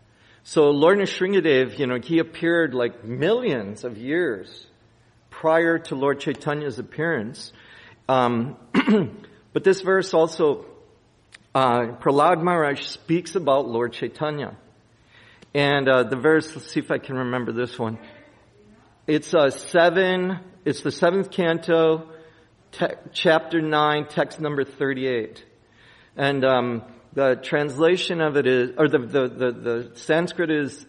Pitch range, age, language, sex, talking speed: 120-155 Hz, 50-69, English, male, 130 wpm